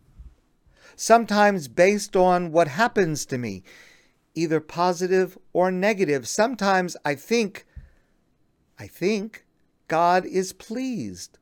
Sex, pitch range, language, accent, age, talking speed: male, 135-220 Hz, English, American, 50-69, 100 wpm